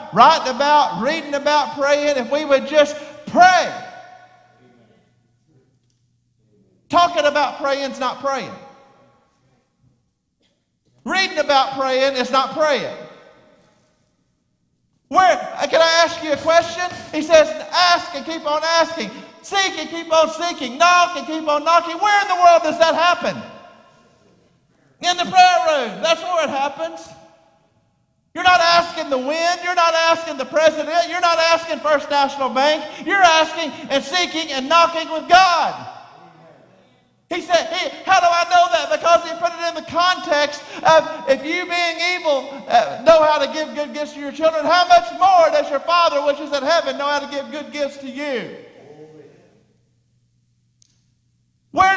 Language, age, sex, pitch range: English, 50-69, male, 280-345 Hz